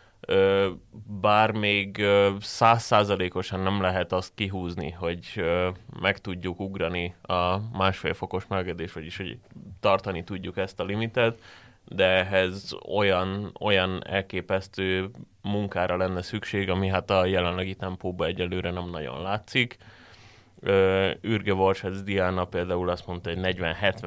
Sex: male